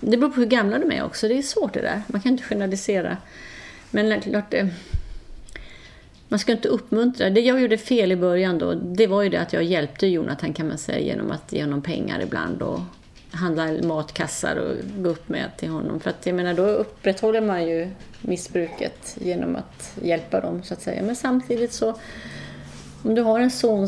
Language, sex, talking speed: Swedish, female, 200 wpm